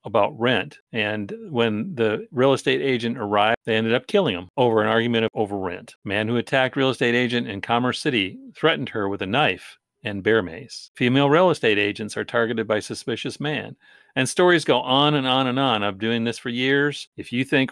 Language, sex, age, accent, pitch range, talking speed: English, male, 50-69, American, 105-140 Hz, 210 wpm